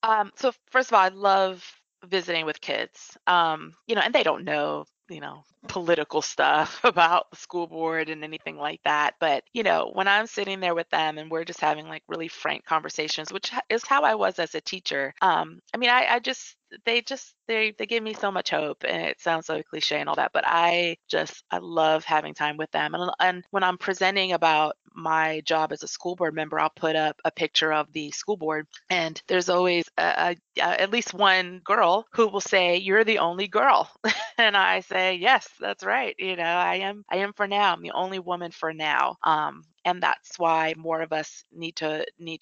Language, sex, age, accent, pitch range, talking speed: English, female, 20-39, American, 160-195 Hz, 220 wpm